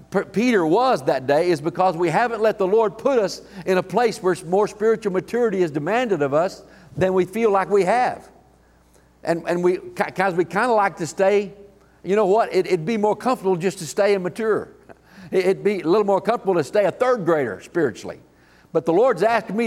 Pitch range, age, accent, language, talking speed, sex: 180-235 Hz, 50-69, American, English, 210 wpm, male